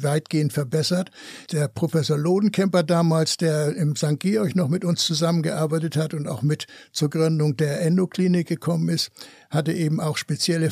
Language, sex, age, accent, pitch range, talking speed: German, male, 60-79, German, 155-175 Hz, 155 wpm